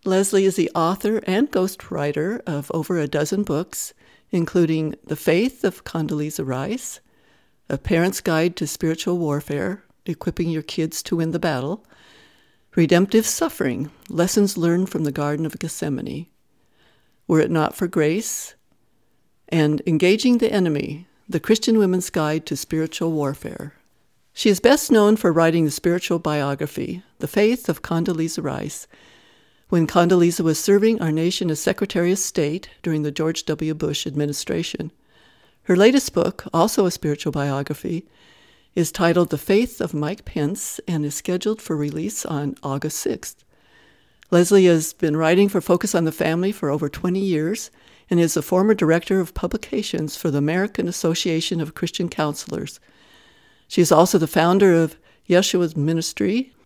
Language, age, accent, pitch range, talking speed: English, 60-79, American, 155-190 Hz, 150 wpm